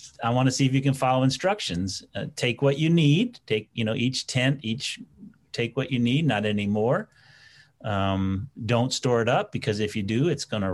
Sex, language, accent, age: male, English, American, 40-59